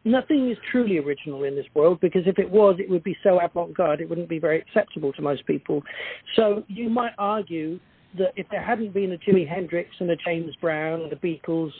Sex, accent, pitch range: male, British, 175-220 Hz